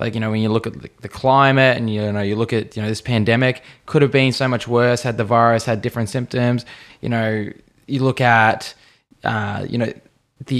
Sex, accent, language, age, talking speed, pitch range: male, Australian, English, 20-39, 225 wpm, 110-130 Hz